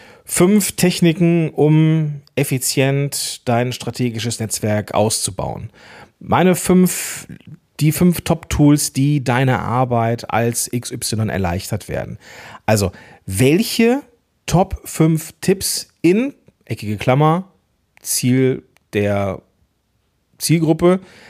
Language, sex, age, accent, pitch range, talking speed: German, male, 40-59, German, 120-160 Hz, 90 wpm